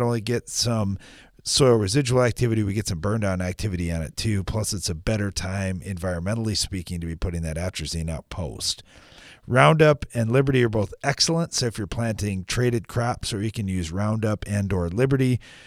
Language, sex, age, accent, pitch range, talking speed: English, male, 40-59, American, 100-135 Hz, 190 wpm